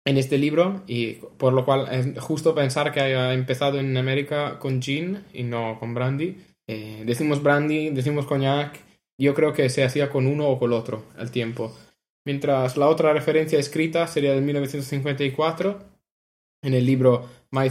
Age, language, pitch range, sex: 20-39, Spanish, 130-150 Hz, male